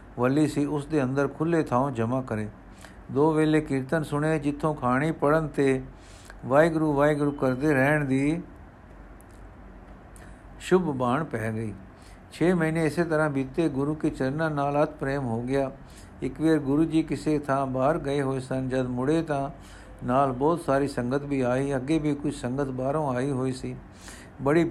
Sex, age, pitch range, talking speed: male, 60-79, 125-150 Hz, 145 wpm